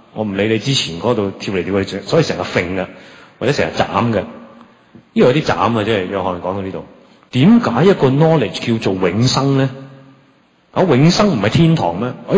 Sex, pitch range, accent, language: male, 110-155 Hz, native, Chinese